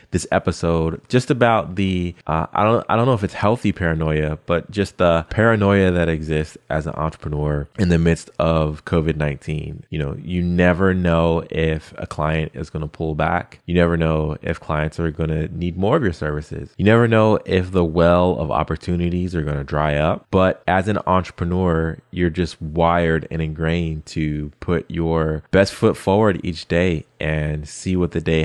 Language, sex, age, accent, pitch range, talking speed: English, male, 20-39, American, 80-95 Hz, 190 wpm